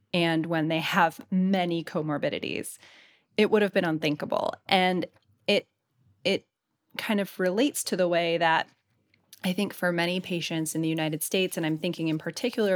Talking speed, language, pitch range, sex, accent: 165 wpm, English, 175-220 Hz, female, American